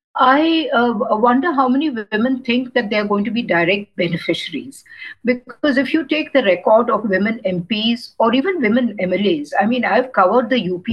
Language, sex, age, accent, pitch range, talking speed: English, female, 60-79, Indian, 205-275 Hz, 180 wpm